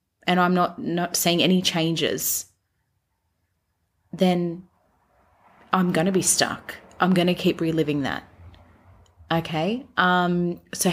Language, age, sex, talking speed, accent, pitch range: English, 30-49, female, 120 wpm, Australian, 145-185 Hz